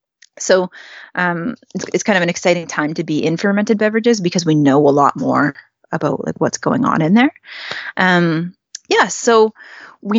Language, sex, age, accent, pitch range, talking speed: English, female, 20-39, American, 160-200 Hz, 185 wpm